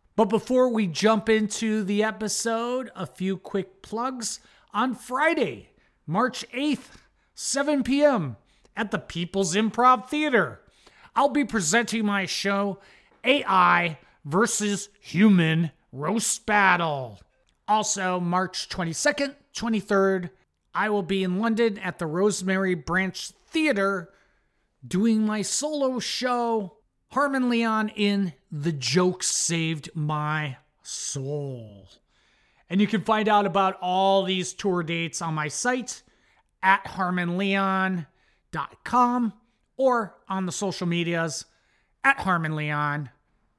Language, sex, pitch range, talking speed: English, male, 175-230 Hz, 110 wpm